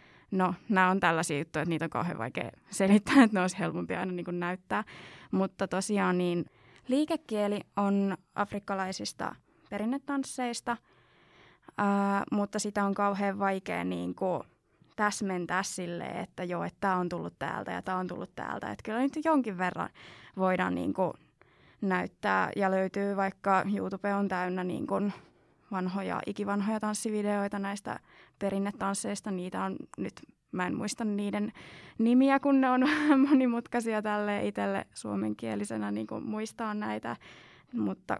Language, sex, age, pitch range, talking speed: Finnish, female, 20-39, 185-215 Hz, 130 wpm